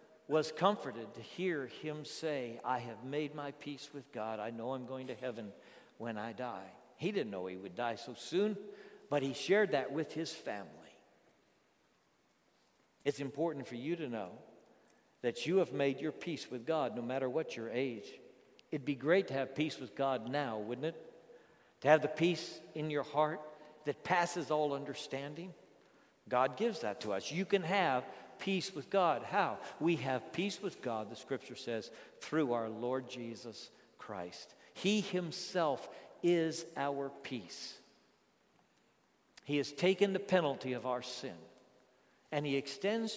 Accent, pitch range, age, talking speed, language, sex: American, 130-170 Hz, 60-79, 165 wpm, English, male